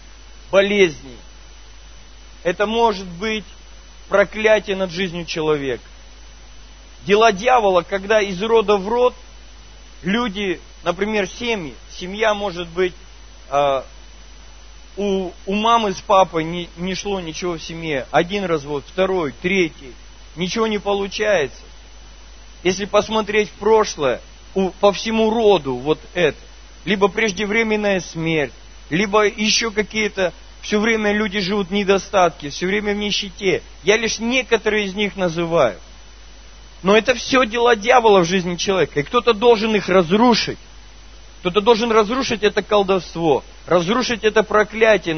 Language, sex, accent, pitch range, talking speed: Russian, male, native, 170-215 Hz, 120 wpm